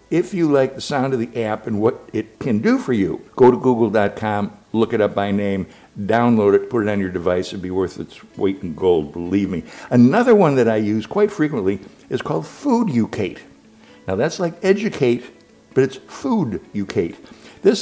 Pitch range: 105-145 Hz